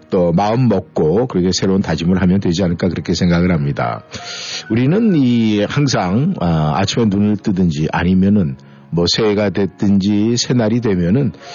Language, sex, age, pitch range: Korean, male, 50-69, 95-130 Hz